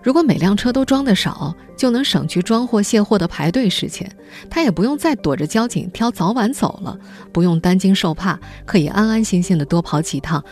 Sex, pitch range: female, 155-215 Hz